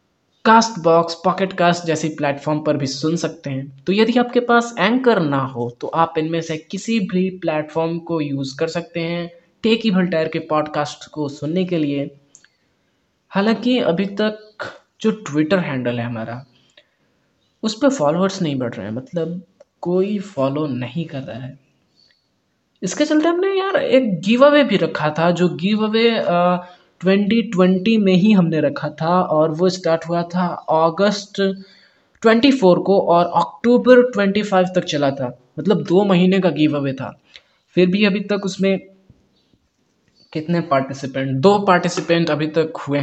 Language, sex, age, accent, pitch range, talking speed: Hindi, male, 20-39, native, 145-195 Hz, 155 wpm